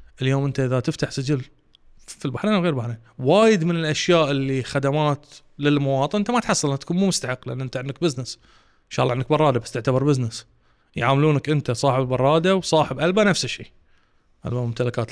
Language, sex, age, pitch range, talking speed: Arabic, male, 20-39, 135-180 Hz, 175 wpm